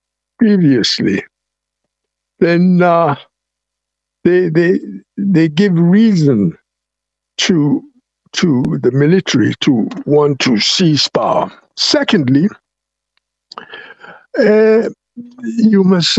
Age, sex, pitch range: 60-79, male, 165-225 Hz